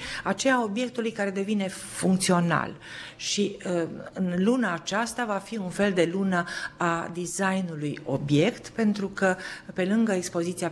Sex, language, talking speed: female, Romanian, 135 wpm